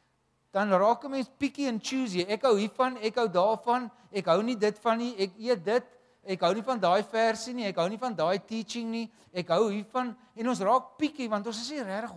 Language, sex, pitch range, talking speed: English, male, 195-250 Hz, 235 wpm